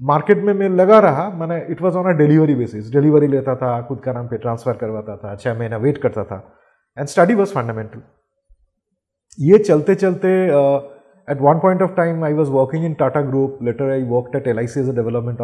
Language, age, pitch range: English, 30-49, 130-175 Hz